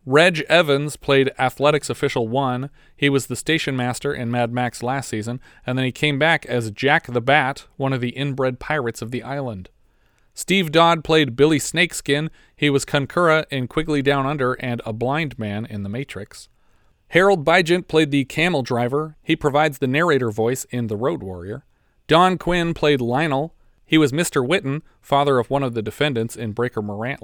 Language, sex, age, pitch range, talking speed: English, male, 40-59, 115-145 Hz, 185 wpm